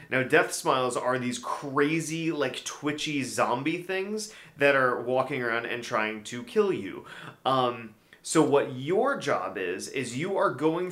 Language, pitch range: English, 120-155 Hz